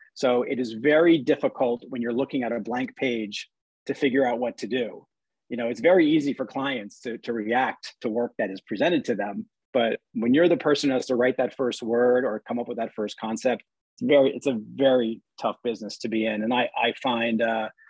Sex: male